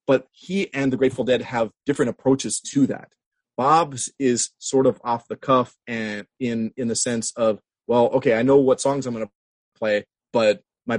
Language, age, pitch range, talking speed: English, 30-49, 110-135 Hz, 195 wpm